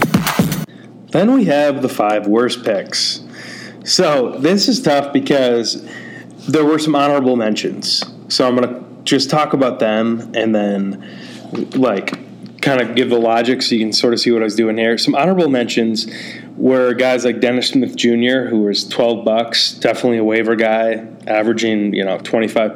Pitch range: 110-130 Hz